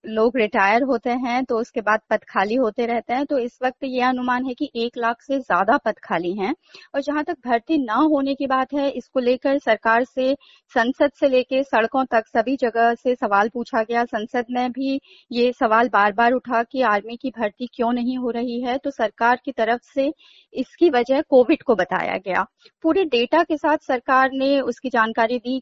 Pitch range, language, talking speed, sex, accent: 235-310 Hz, Hindi, 205 wpm, female, native